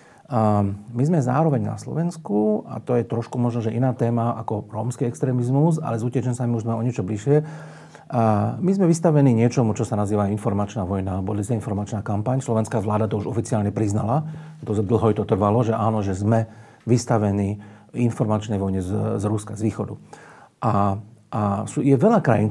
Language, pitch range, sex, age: Slovak, 105-130 Hz, male, 40-59